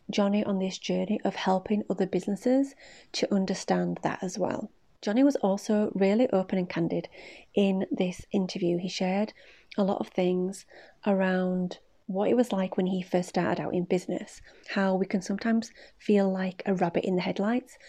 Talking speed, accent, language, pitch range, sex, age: 175 wpm, British, English, 185-215 Hz, female, 30-49